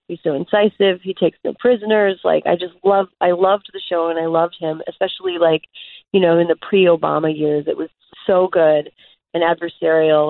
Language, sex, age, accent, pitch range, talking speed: English, female, 30-49, American, 160-195 Hz, 200 wpm